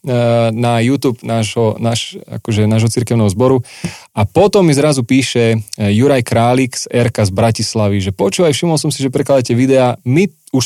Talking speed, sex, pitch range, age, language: 165 wpm, male, 110-135 Hz, 30-49, Slovak